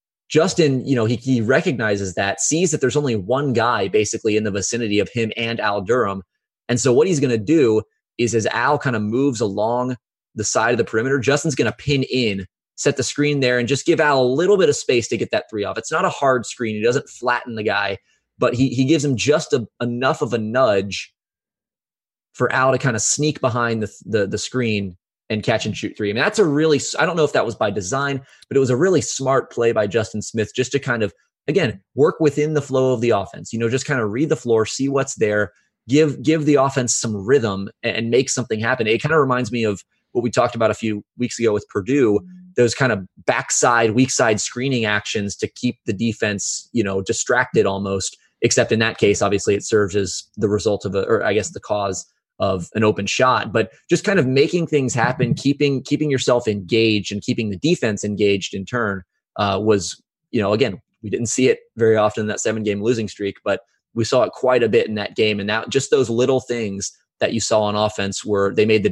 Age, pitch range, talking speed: 20-39, 105-135 Hz, 235 wpm